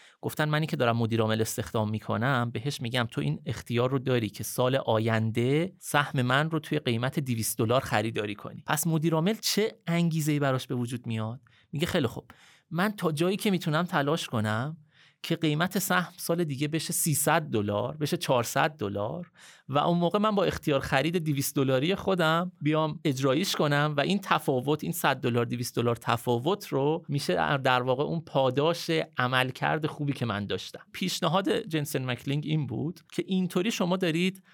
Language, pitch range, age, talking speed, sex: Persian, 120-165 Hz, 30-49, 170 wpm, male